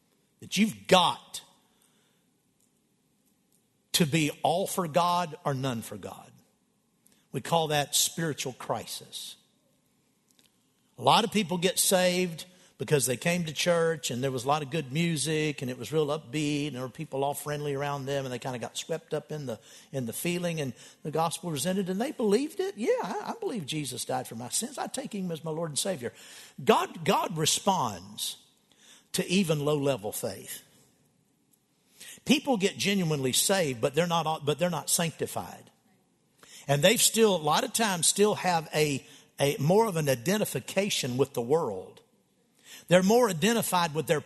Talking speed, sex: 170 wpm, male